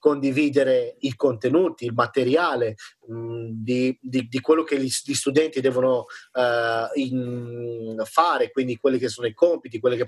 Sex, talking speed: male, 155 wpm